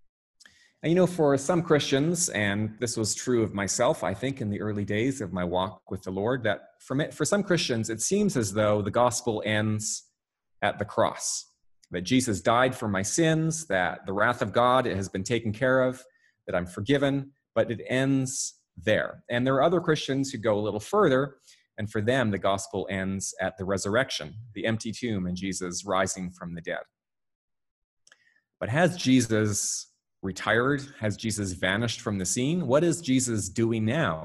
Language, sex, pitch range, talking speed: English, male, 95-130 Hz, 185 wpm